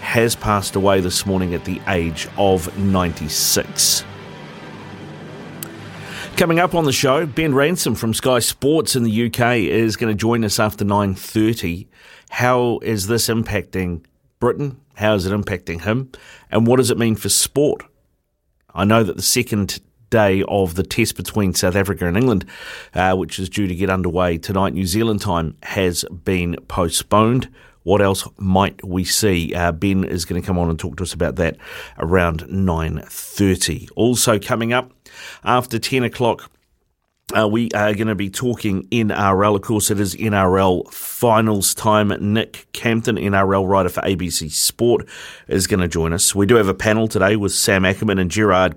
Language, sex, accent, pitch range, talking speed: English, male, Australian, 95-115 Hz, 170 wpm